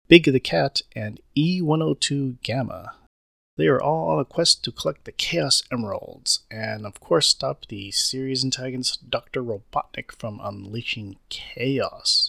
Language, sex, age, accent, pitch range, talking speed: English, male, 30-49, American, 110-140 Hz, 140 wpm